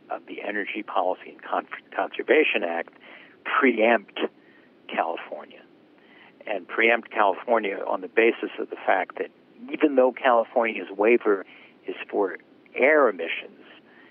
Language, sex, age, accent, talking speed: English, male, 60-79, American, 110 wpm